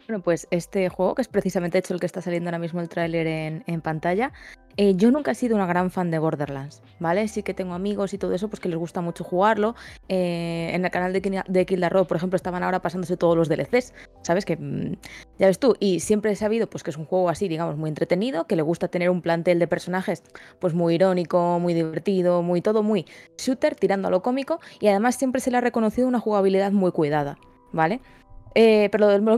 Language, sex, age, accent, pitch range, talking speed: Spanish, female, 20-39, Spanish, 170-215 Hz, 230 wpm